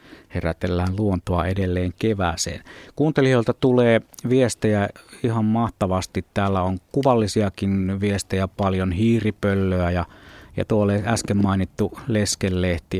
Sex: male